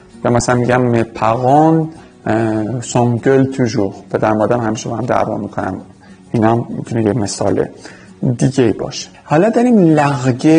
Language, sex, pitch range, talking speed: Persian, male, 115-160 Hz, 135 wpm